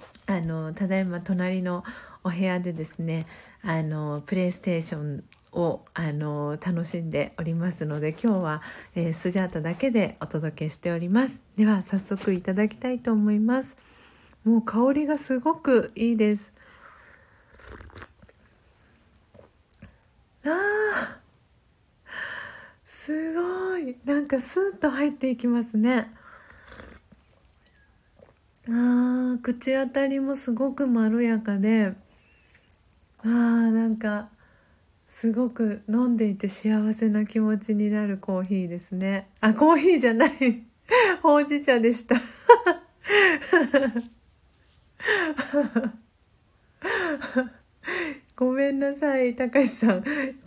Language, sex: Japanese, female